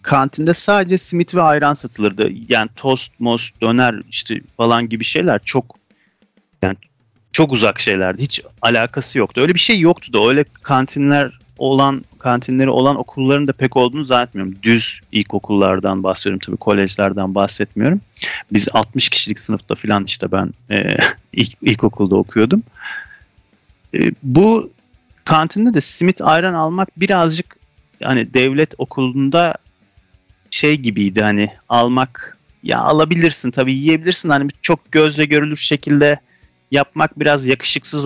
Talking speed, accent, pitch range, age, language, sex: 130 wpm, native, 110-145 Hz, 40-59, Turkish, male